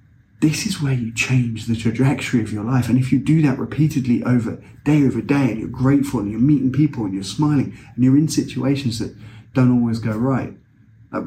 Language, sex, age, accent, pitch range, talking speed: English, male, 30-49, British, 115-140 Hz, 215 wpm